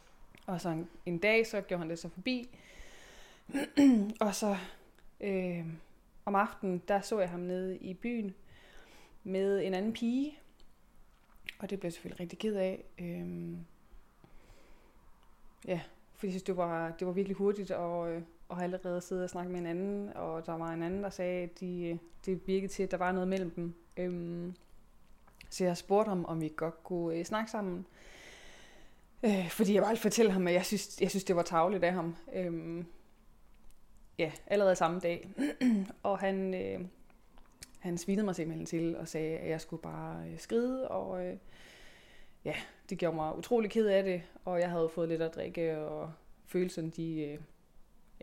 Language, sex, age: Danish, female, 20-39